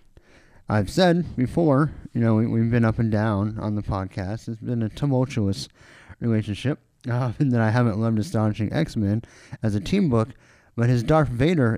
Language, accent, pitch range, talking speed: English, American, 100-125 Hz, 175 wpm